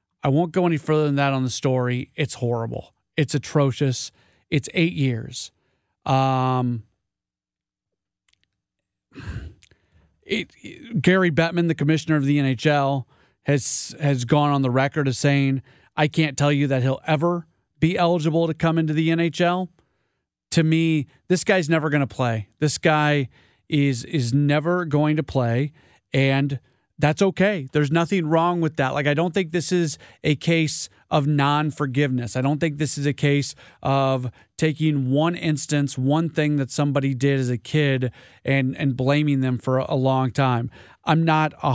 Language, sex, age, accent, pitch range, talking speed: English, male, 30-49, American, 130-160 Hz, 160 wpm